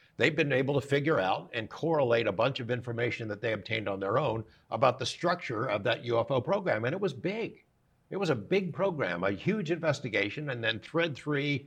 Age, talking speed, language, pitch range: 60-79, 210 wpm, English, 115-155 Hz